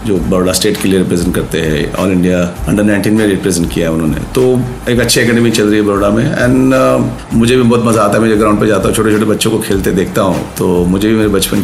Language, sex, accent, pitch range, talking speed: Hindi, male, native, 105-135 Hz, 270 wpm